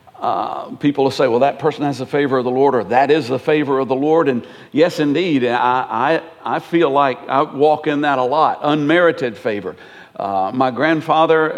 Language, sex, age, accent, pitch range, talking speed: English, male, 60-79, American, 145-195 Hz, 200 wpm